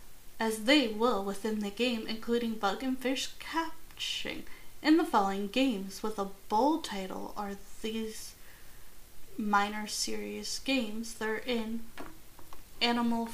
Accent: American